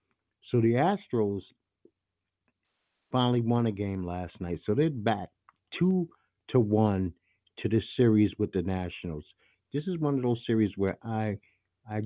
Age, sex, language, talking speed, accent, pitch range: 50-69, male, English, 150 wpm, American, 95-115 Hz